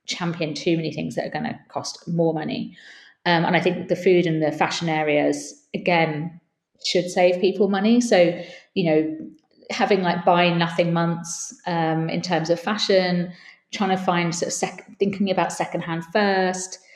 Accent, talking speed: British, 175 wpm